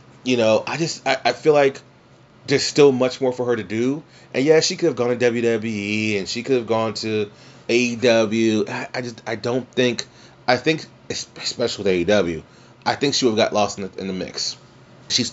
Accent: American